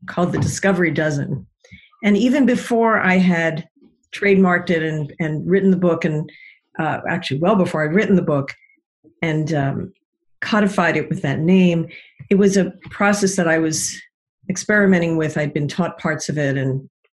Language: English